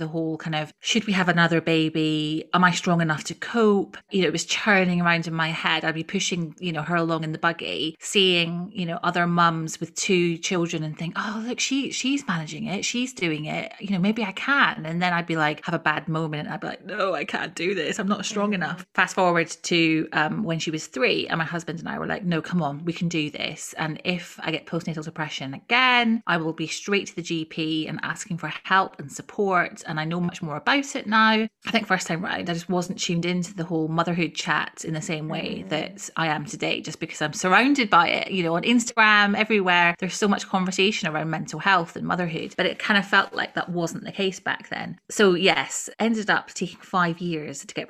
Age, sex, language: 30-49, female, English